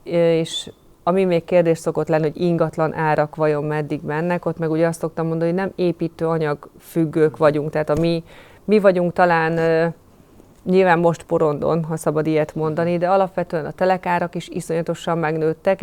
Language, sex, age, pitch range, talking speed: Hungarian, female, 30-49, 160-175 Hz, 155 wpm